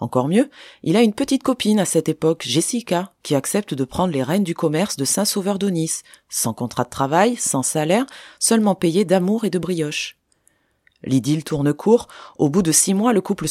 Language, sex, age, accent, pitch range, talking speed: French, female, 20-39, French, 145-205 Hz, 200 wpm